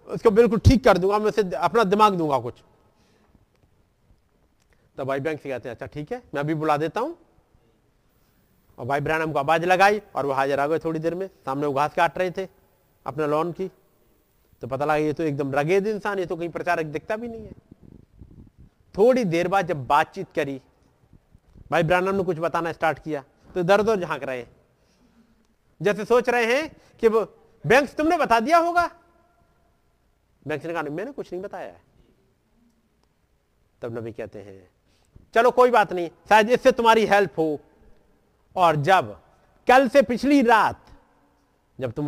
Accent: native